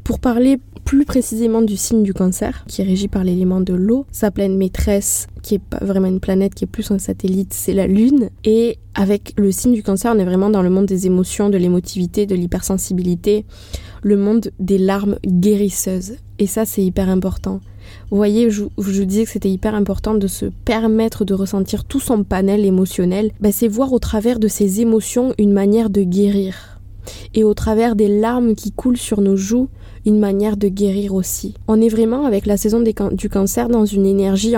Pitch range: 190-220 Hz